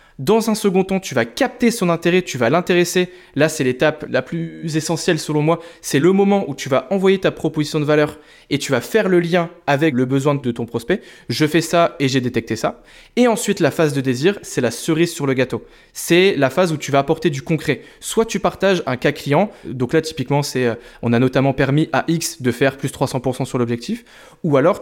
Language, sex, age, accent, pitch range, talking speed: French, male, 20-39, French, 135-175 Hz, 230 wpm